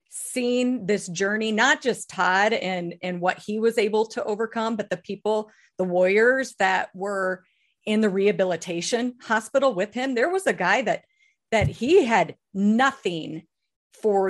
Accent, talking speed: American, 155 wpm